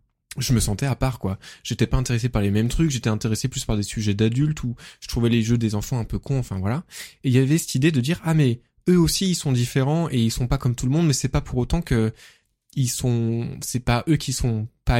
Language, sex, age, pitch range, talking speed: French, male, 20-39, 110-140 Hz, 275 wpm